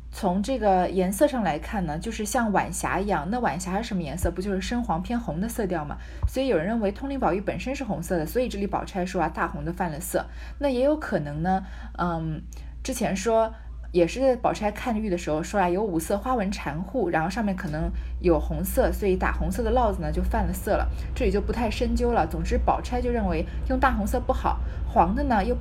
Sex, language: female, Chinese